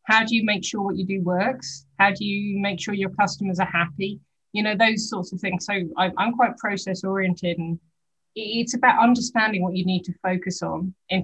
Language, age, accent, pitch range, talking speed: English, 30-49, British, 175-200 Hz, 215 wpm